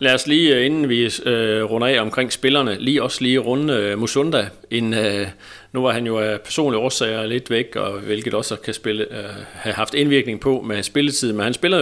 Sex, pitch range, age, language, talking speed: male, 105-135 Hz, 40-59, Danish, 195 wpm